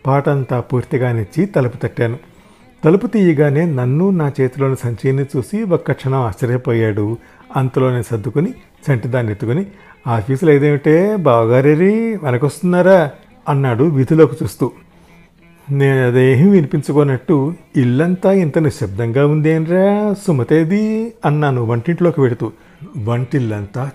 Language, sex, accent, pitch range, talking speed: Telugu, male, native, 125-175 Hz, 95 wpm